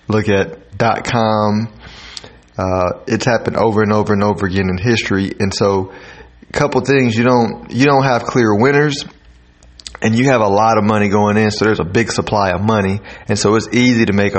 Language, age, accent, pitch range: English, 30-49, American, 100-115 Hz